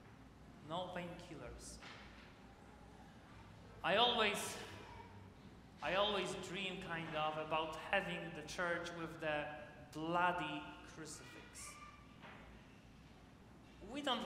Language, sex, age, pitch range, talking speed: English, male, 30-49, 160-185 Hz, 75 wpm